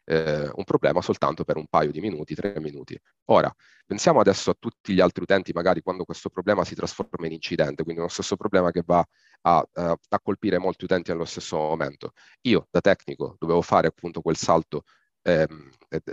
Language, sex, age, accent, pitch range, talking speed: Italian, male, 30-49, native, 80-90 Hz, 190 wpm